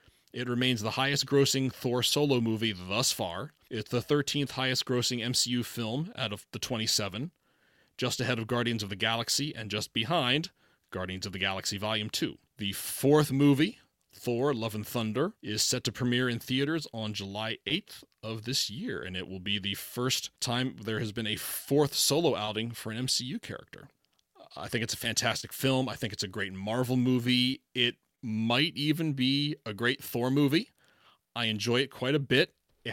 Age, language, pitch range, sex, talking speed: 30-49, English, 110-130 Hz, male, 180 wpm